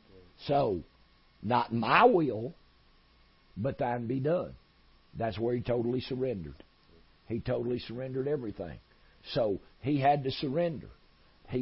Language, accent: English, American